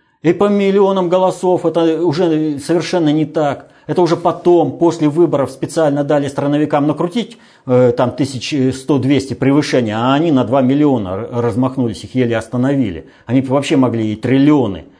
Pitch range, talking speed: 100-145 Hz, 145 wpm